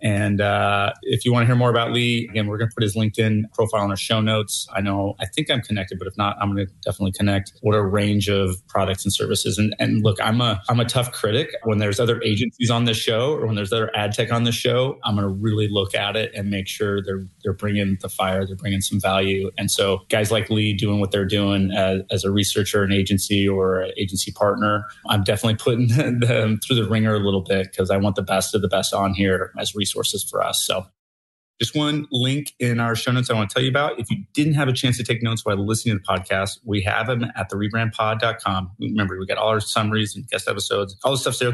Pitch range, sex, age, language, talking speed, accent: 100-120 Hz, male, 30-49, English, 260 wpm, American